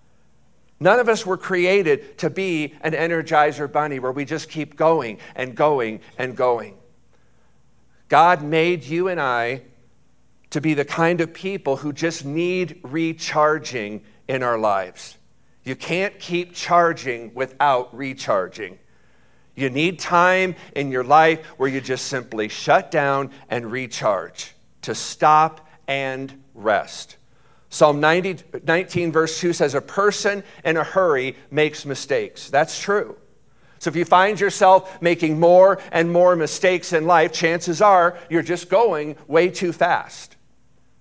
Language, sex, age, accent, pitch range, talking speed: English, male, 50-69, American, 130-170 Hz, 140 wpm